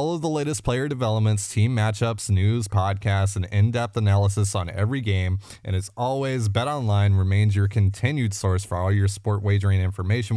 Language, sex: English, male